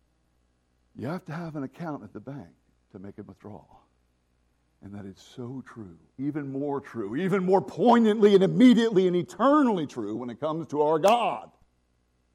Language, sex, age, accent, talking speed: English, male, 50-69, American, 170 wpm